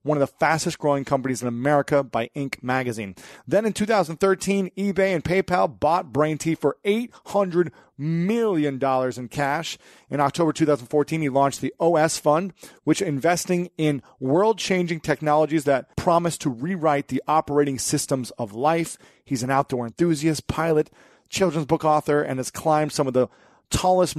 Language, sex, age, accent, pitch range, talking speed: English, male, 30-49, American, 130-165 Hz, 180 wpm